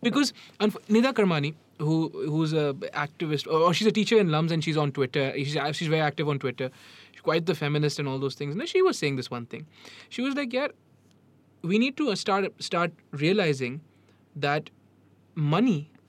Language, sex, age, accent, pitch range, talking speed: English, male, 20-39, Indian, 140-195 Hz, 200 wpm